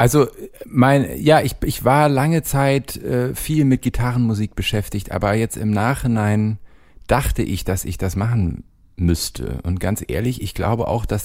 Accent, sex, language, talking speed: German, male, German, 165 wpm